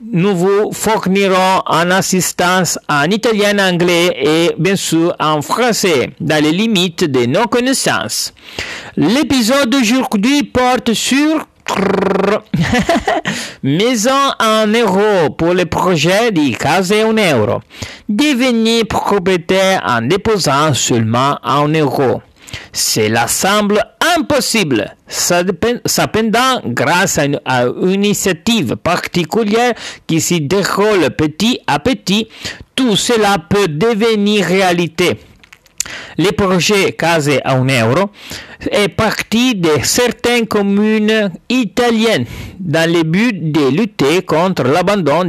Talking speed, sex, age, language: 105 wpm, male, 50-69, Italian